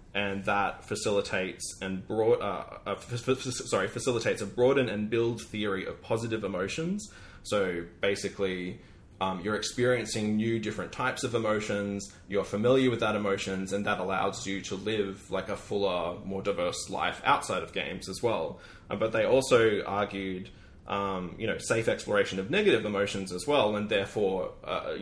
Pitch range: 95-115 Hz